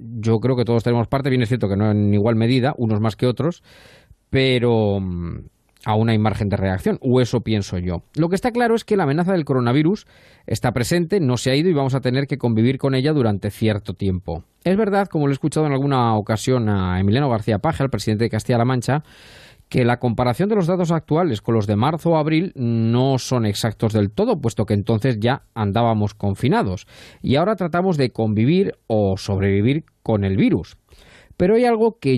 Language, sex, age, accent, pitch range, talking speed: Spanish, male, 20-39, Spanish, 105-145 Hz, 205 wpm